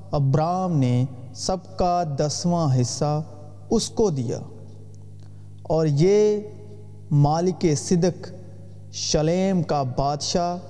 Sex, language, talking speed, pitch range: male, Urdu, 90 wpm, 125-185 Hz